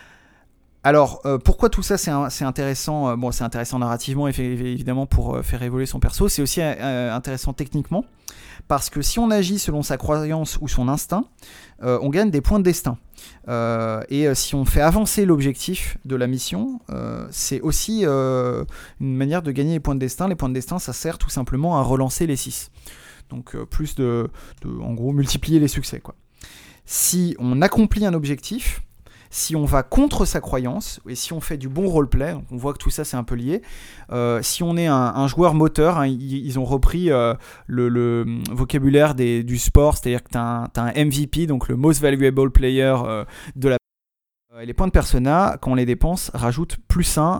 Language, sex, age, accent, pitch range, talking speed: French, male, 30-49, French, 125-155 Hz, 210 wpm